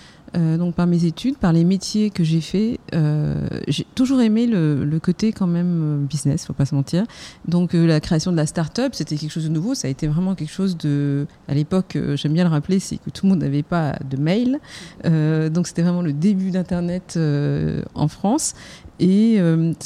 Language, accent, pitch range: French, French, 160-210 Hz